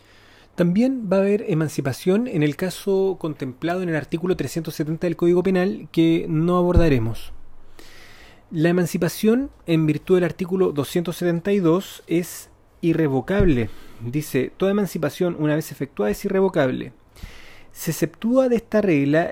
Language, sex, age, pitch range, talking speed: Spanish, male, 30-49, 140-185 Hz, 125 wpm